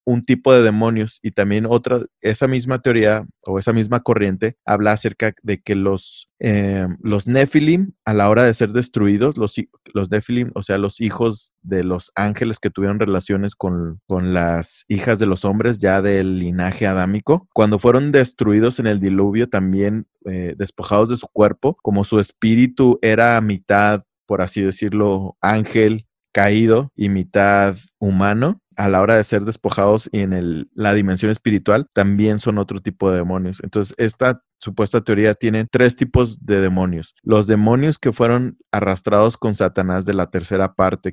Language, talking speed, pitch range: Spanish, 170 wpm, 95-115 Hz